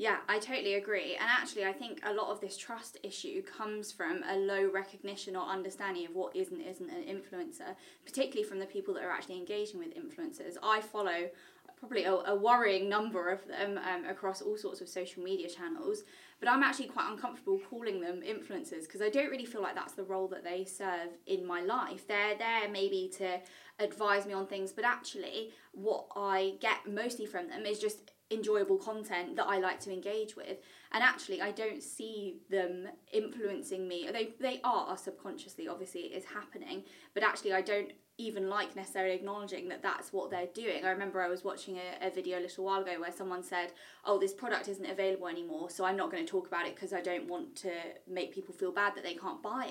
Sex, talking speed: female, 210 wpm